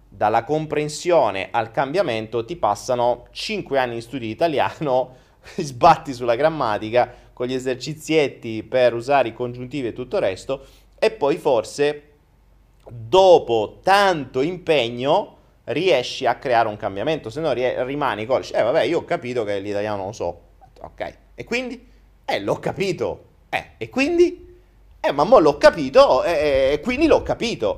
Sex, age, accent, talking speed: male, 30-49, native, 150 wpm